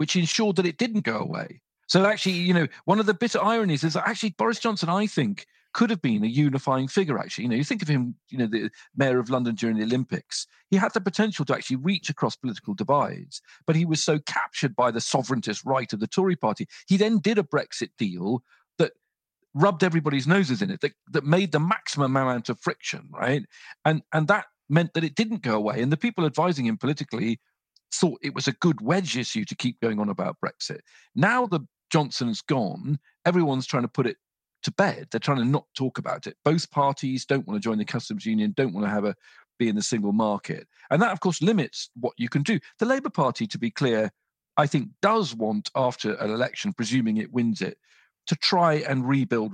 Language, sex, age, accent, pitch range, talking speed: English, male, 40-59, British, 125-190 Hz, 225 wpm